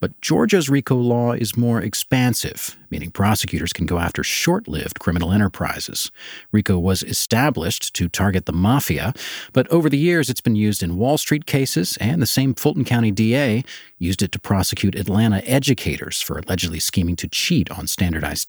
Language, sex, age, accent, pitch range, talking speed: English, male, 40-59, American, 90-120 Hz, 170 wpm